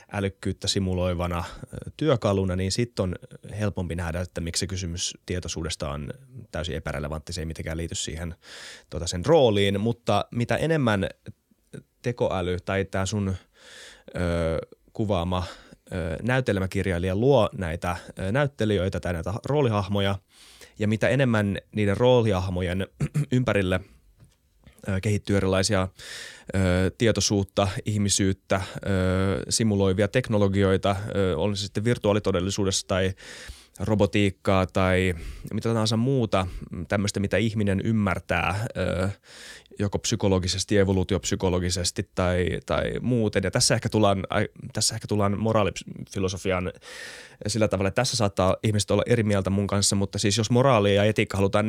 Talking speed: 115 wpm